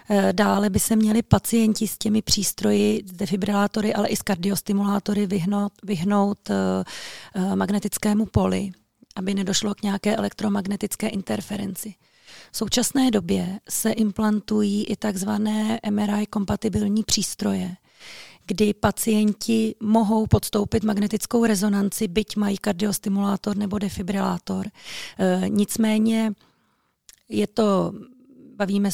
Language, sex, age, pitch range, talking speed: Czech, female, 30-49, 200-215 Hz, 95 wpm